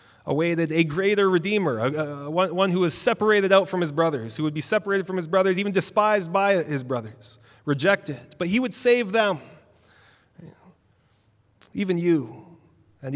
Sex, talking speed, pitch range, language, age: male, 160 wpm, 120-170 Hz, English, 30-49